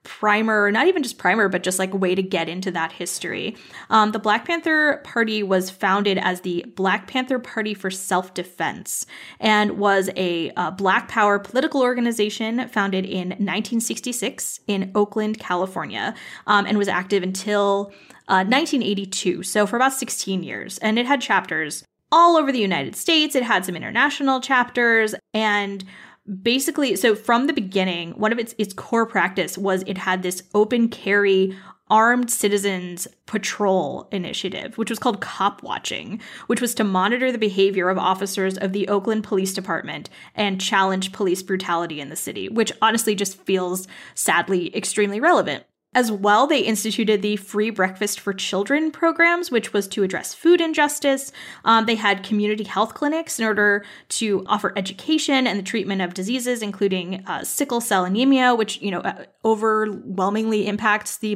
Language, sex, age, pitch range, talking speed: English, female, 20-39, 190-230 Hz, 160 wpm